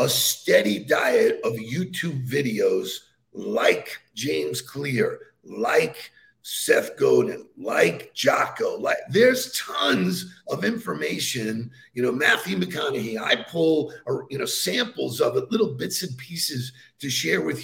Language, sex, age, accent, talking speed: English, male, 50-69, American, 125 wpm